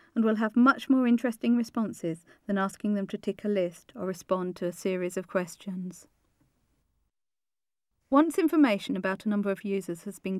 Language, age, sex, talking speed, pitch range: English, 40-59, female, 175 wpm, 185-225 Hz